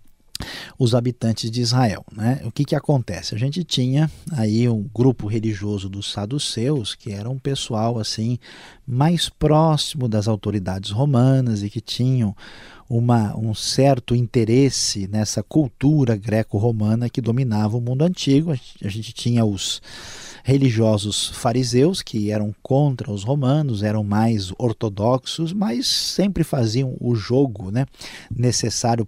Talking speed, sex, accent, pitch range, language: 130 wpm, male, Brazilian, 110-135 Hz, Portuguese